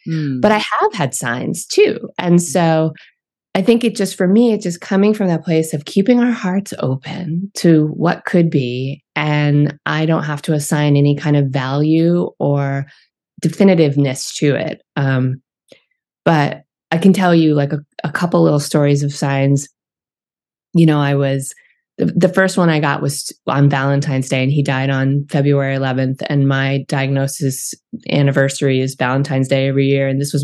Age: 20-39